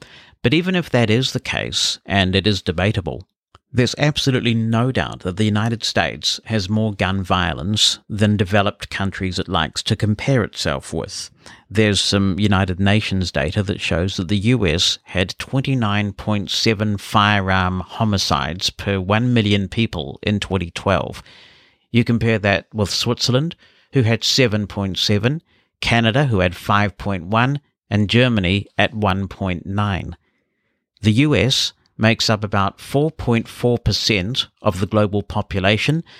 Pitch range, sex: 100-125 Hz, male